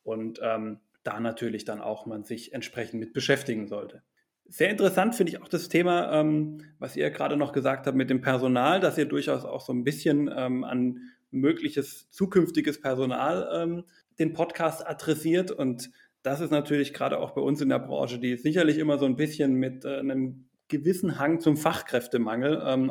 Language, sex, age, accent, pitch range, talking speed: German, male, 30-49, German, 120-145 Hz, 185 wpm